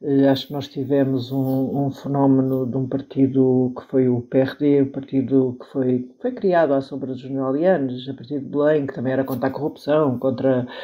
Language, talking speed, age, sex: Portuguese, 200 wpm, 60-79, male